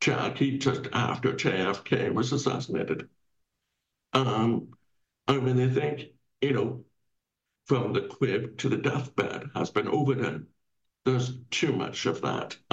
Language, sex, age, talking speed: English, male, 60-79, 125 wpm